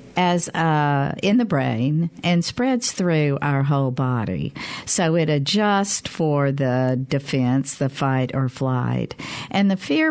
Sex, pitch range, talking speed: female, 145-185 Hz, 140 wpm